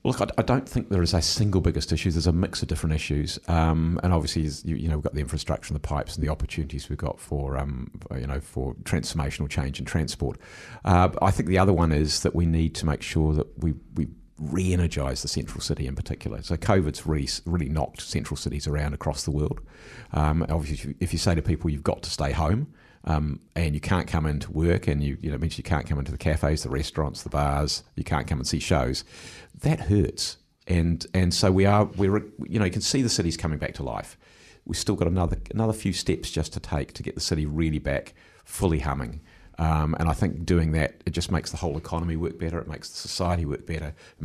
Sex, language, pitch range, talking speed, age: male, English, 75-90 Hz, 235 wpm, 50-69